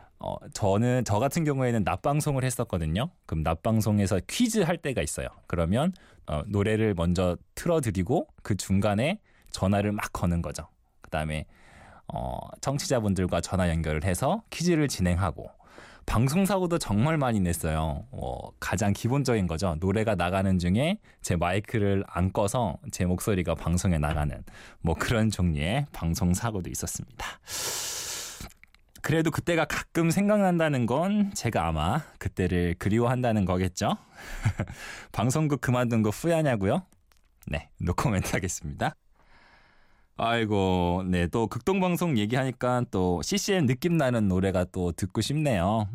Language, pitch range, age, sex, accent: Korean, 90-135 Hz, 20-39, male, native